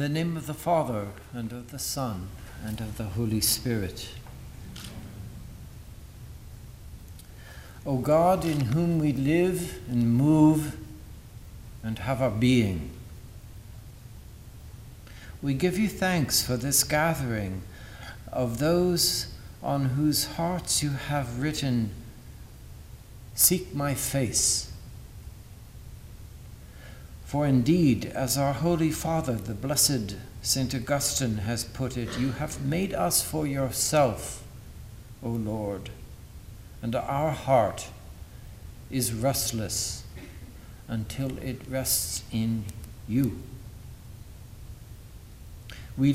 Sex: male